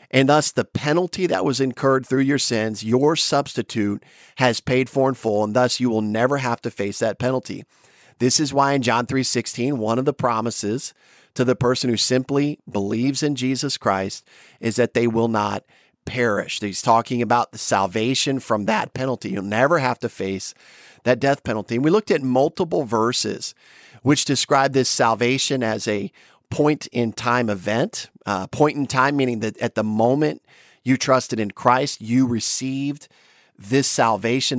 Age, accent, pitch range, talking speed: 40-59, American, 115-135 Hz, 170 wpm